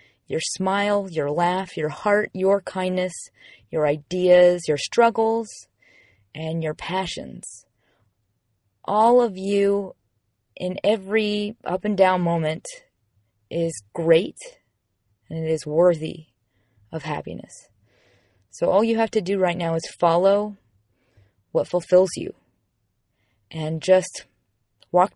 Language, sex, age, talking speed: English, female, 20-39, 115 wpm